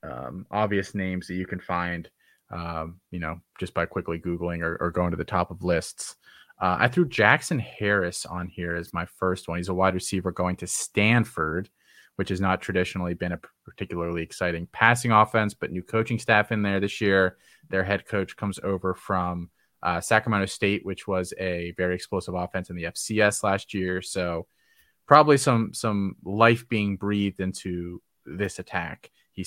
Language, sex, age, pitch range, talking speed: English, male, 30-49, 90-105 Hz, 180 wpm